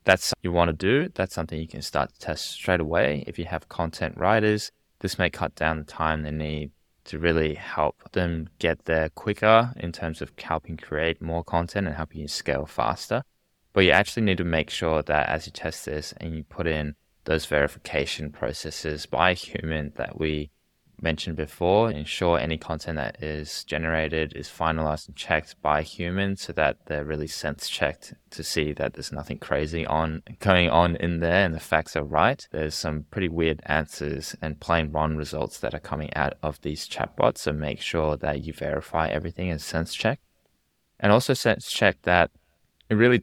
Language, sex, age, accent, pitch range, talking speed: English, male, 20-39, Australian, 75-85 Hz, 195 wpm